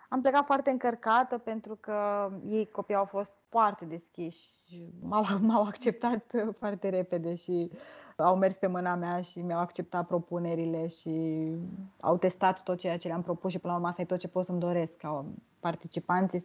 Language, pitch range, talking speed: Romanian, 180-235 Hz, 170 wpm